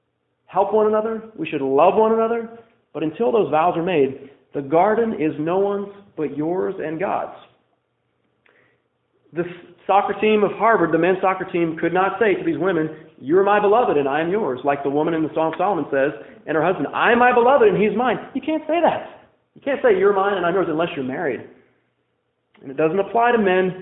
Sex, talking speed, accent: male, 215 wpm, American